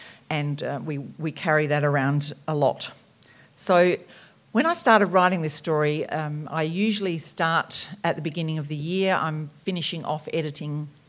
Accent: Australian